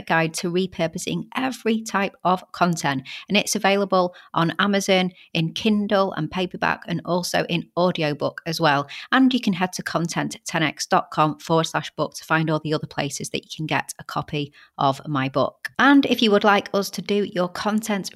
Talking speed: 185 wpm